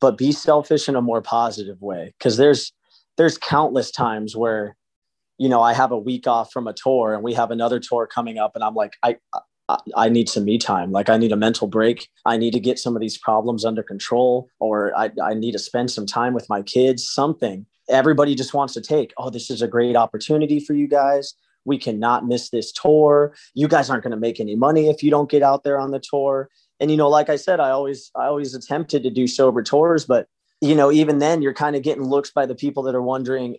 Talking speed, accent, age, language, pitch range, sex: 245 wpm, American, 20-39, English, 120-145 Hz, male